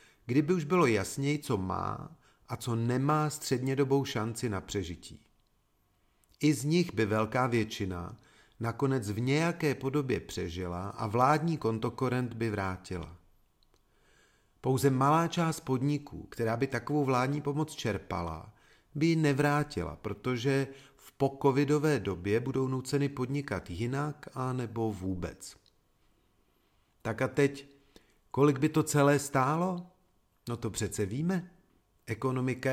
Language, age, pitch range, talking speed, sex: Czech, 40-59, 110-150 Hz, 120 wpm, male